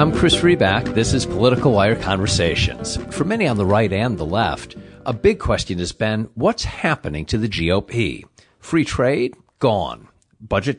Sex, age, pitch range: male, 50-69, 95-140 Hz